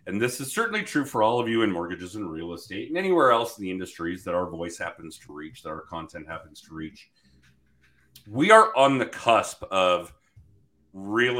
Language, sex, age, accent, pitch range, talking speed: English, male, 40-59, American, 100-135 Hz, 205 wpm